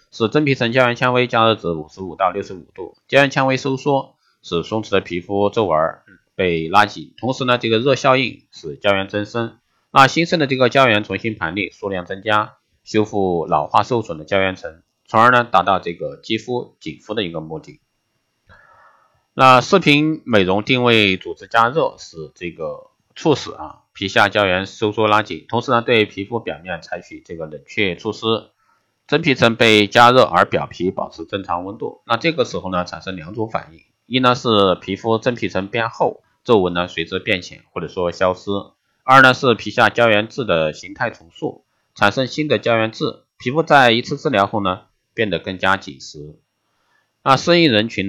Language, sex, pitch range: Chinese, male, 95-125 Hz